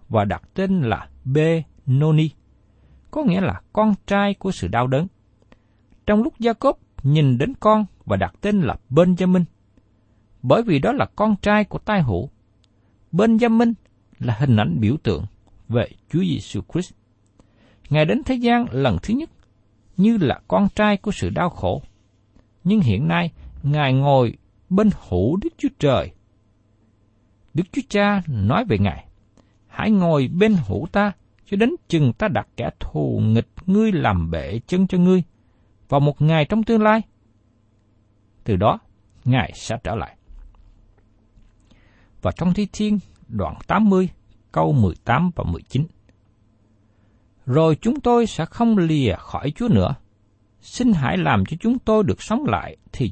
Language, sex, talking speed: Vietnamese, male, 155 wpm